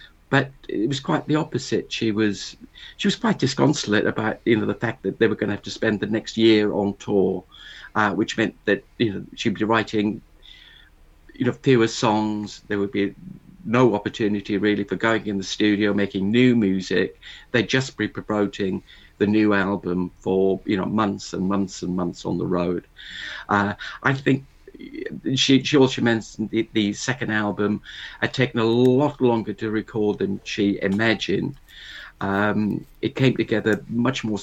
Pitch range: 95-115 Hz